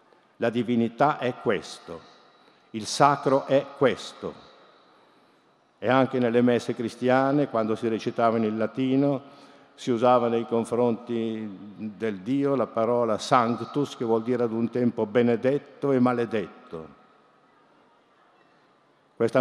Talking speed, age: 115 wpm, 50-69